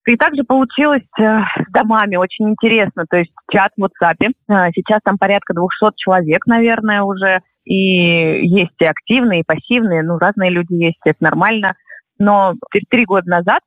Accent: native